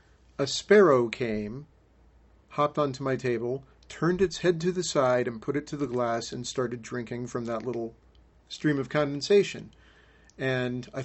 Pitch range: 115-145 Hz